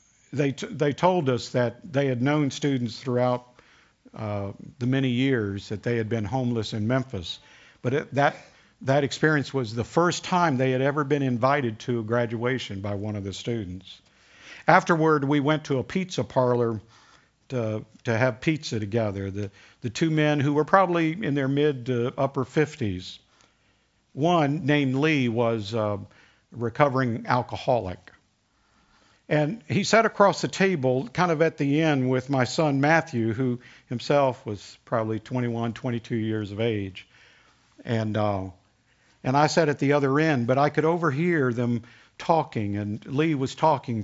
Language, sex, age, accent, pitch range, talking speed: English, male, 50-69, American, 115-145 Hz, 160 wpm